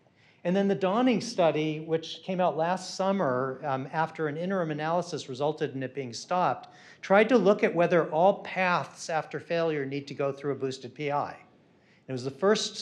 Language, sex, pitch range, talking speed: English, male, 140-175 Hz, 185 wpm